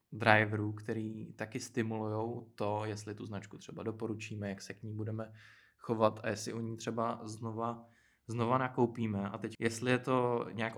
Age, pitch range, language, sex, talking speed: 20-39, 110-125 Hz, Czech, male, 165 wpm